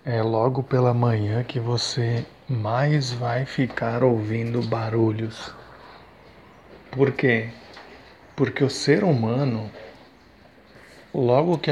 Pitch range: 115-145 Hz